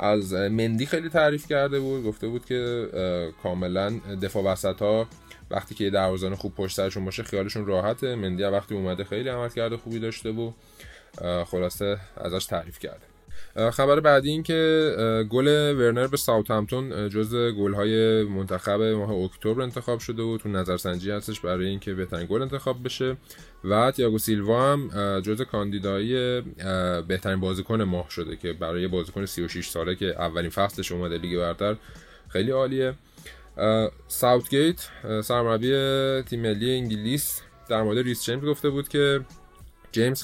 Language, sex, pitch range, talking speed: Persian, male, 95-120 Hz, 150 wpm